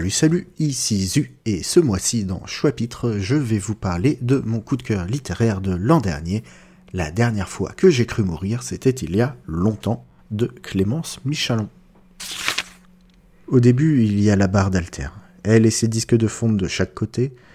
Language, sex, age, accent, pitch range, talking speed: French, male, 40-59, French, 95-115 Hz, 185 wpm